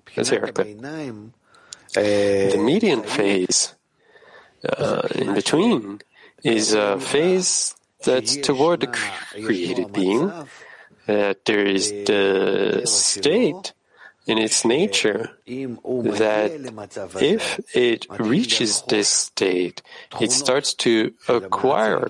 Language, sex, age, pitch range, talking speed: English, male, 40-59, 100-130 Hz, 85 wpm